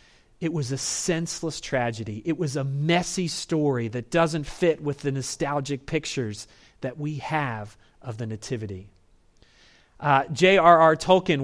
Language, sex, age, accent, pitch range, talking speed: English, male, 30-49, American, 125-170 Hz, 135 wpm